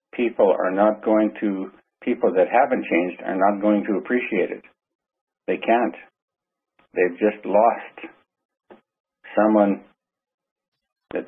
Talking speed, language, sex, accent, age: 115 wpm, English, male, American, 50-69